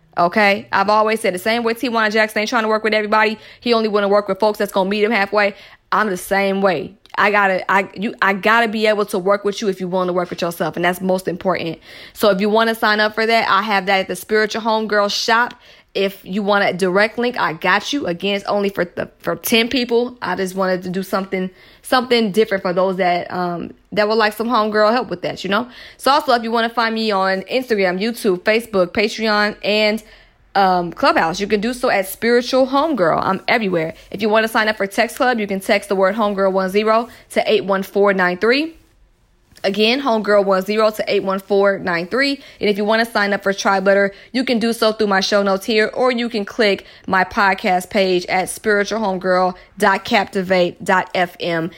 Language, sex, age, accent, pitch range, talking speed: English, female, 20-39, American, 190-220 Hz, 215 wpm